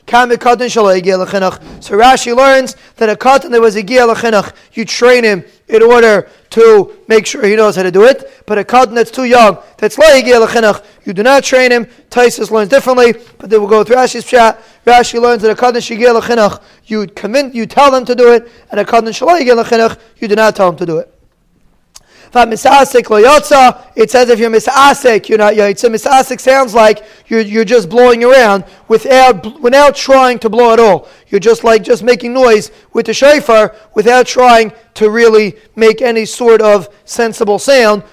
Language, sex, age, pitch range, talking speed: English, male, 20-39, 215-245 Hz, 185 wpm